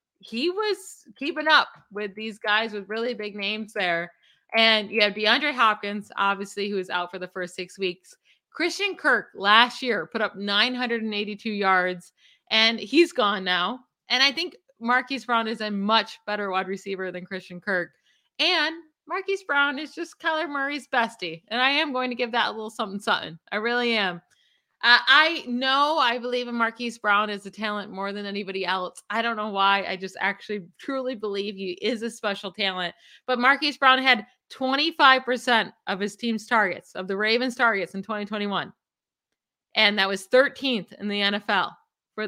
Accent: American